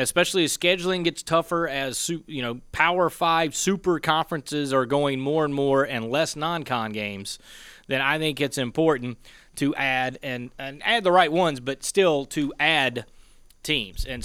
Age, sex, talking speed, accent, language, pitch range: 30-49, male, 170 wpm, American, English, 120-145 Hz